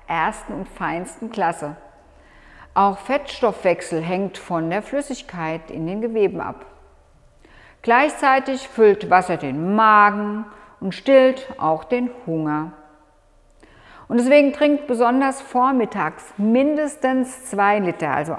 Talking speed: 110 wpm